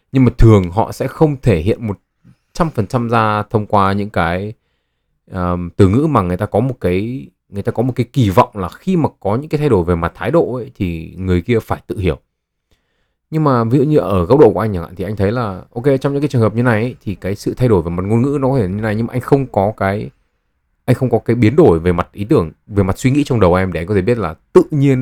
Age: 20-39